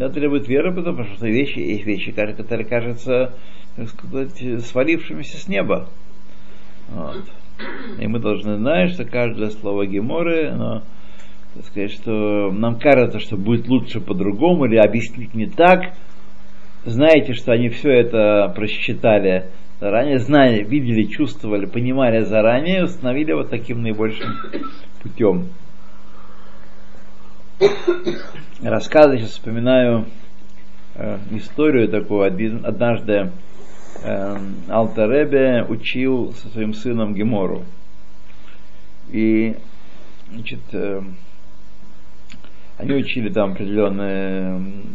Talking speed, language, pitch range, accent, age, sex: 100 wpm, Russian, 100-130 Hz, native, 50-69, male